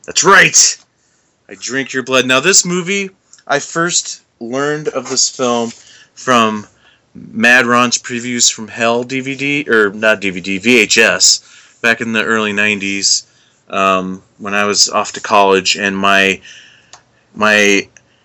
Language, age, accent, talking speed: English, 30-49, American, 130 wpm